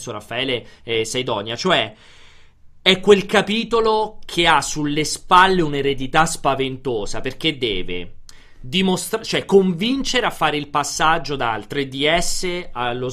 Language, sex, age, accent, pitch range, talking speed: Italian, male, 30-49, native, 120-170 Hz, 120 wpm